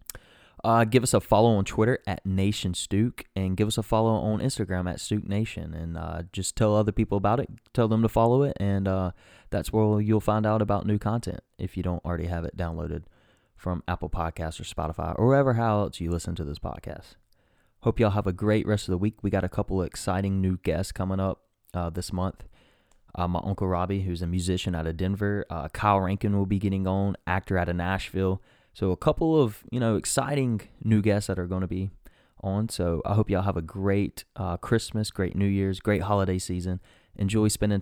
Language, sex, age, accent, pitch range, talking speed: English, male, 20-39, American, 90-105 Hz, 215 wpm